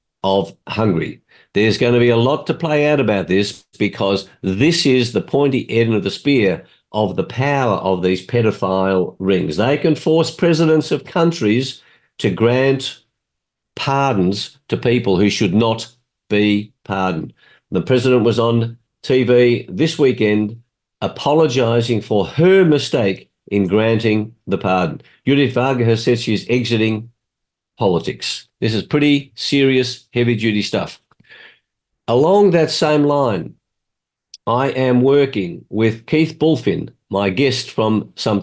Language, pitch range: English, 110-140 Hz